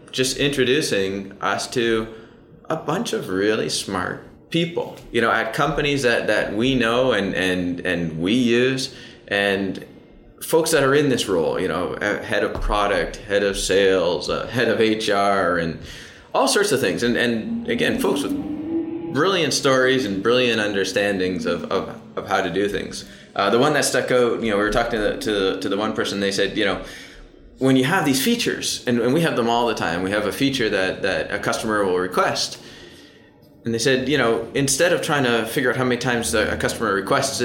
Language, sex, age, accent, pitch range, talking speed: English, male, 20-39, American, 100-135 Hz, 200 wpm